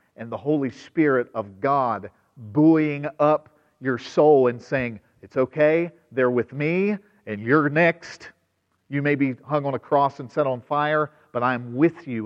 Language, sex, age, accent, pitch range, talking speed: English, male, 50-69, American, 100-140 Hz, 170 wpm